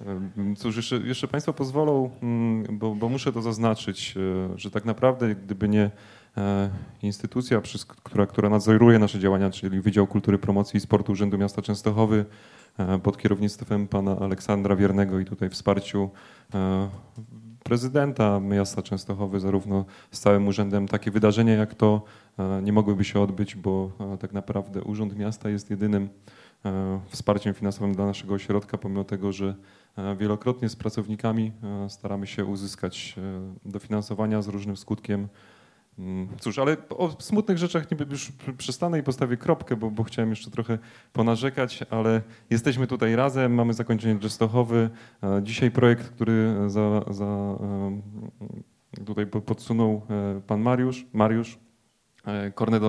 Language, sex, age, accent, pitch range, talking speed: Polish, male, 30-49, native, 100-115 Hz, 130 wpm